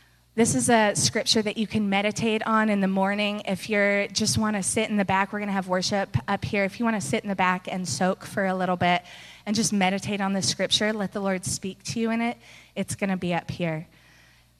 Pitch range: 160-200 Hz